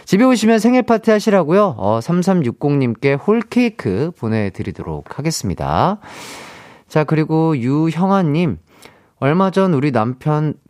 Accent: native